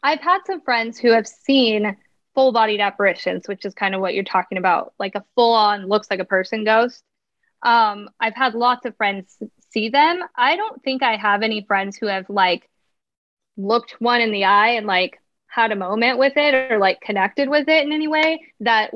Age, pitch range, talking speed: 10-29, 205-255 Hz, 195 wpm